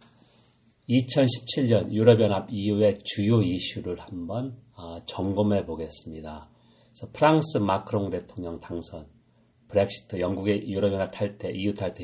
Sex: male